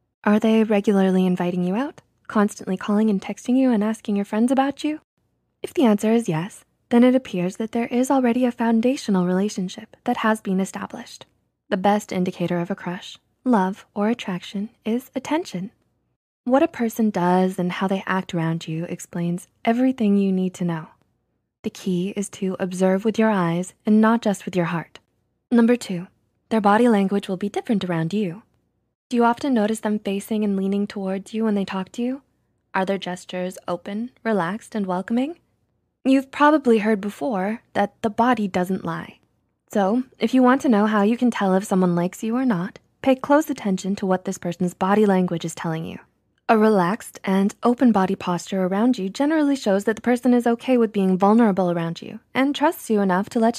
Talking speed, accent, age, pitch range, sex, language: 195 wpm, American, 20-39, 190-235 Hz, female, English